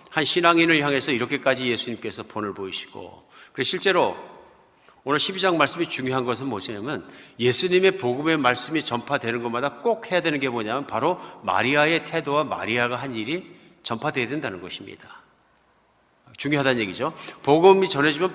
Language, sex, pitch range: Korean, male, 125-175 Hz